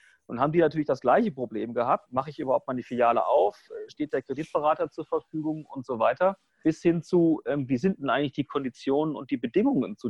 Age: 40-59